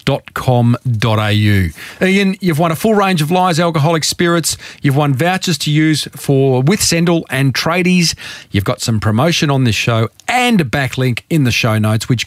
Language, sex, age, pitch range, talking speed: English, male, 40-59, 115-165 Hz, 180 wpm